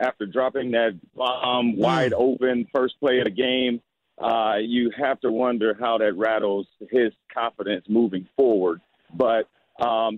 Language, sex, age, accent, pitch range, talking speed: English, male, 50-69, American, 105-130 Hz, 145 wpm